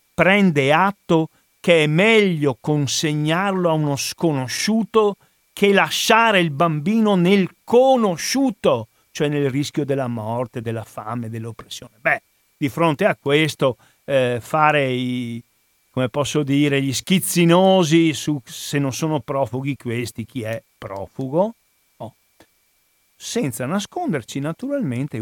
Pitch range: 125-175 Hz